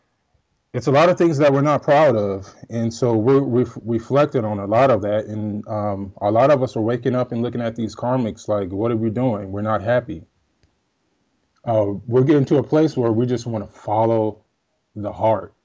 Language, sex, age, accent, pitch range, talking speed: English, male, 20-39, American, 105-125 Hz, 215 wpm